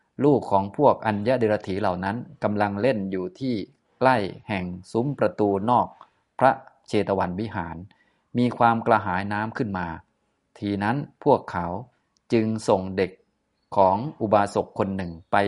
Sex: male